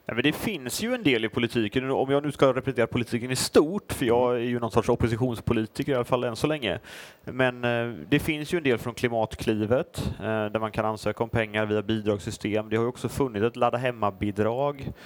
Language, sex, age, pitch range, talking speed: Swedish, male, 30-49, 105-130 Hz, 205 wpm